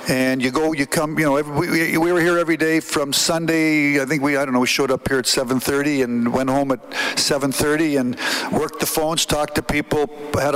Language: English